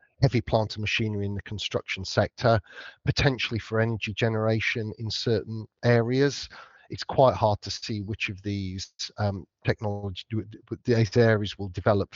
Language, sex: English, male